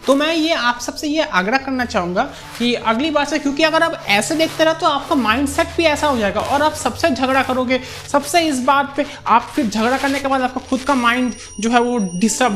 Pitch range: 225-285 Hz